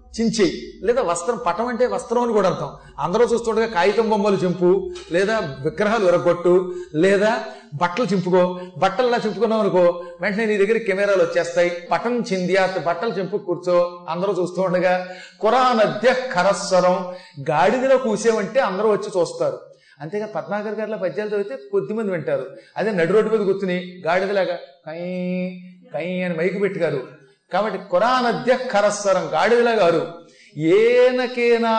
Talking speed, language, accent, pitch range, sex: 125 wpm, Telugu, native, 175-230 Hz, male